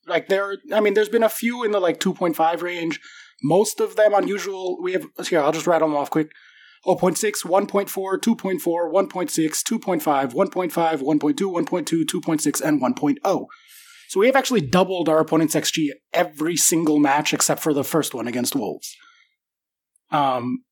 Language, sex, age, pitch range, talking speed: English, male, 20-39, 150-195 Hz, 165 wpm